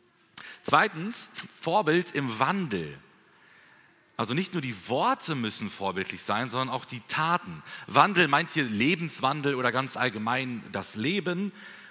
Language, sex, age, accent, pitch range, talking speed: German, male, 40-59, German, 125-175 Hz, 125 wpm